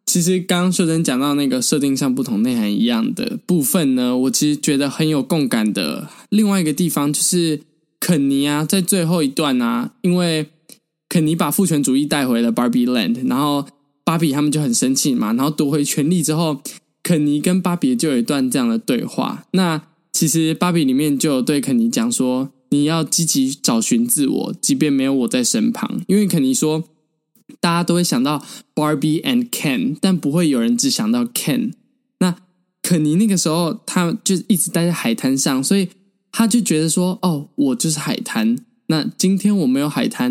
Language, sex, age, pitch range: Chinese, male, 10-29, 155-235 Hz